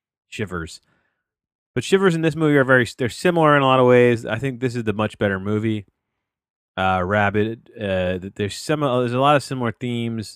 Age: 30-49